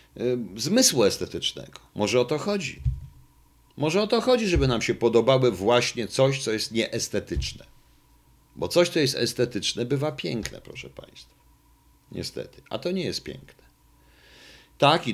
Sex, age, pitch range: male, 50-69, 90-135 Hz